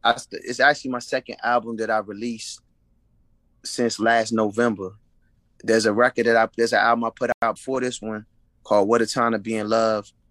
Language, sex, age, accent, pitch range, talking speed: English, male, 20-39, American, 105-115 Hz, 200 wpm